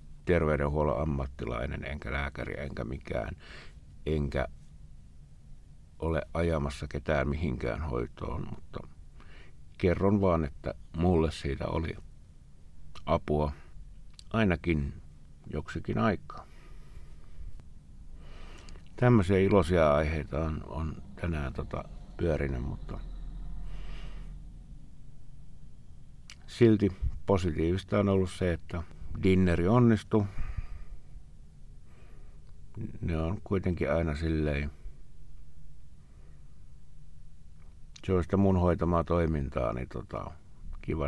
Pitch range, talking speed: 75-90 Hz, 75 wpm